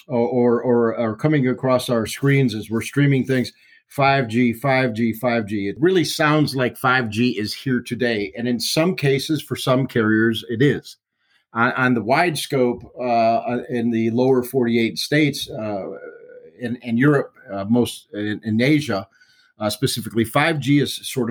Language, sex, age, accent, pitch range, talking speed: English, male, 40-59, American, 115-145 Hz, 160 wpm